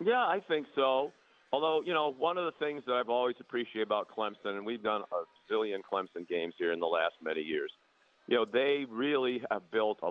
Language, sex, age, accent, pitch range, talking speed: English, male, 50-69, American, 100-140 Hz, 220 wpm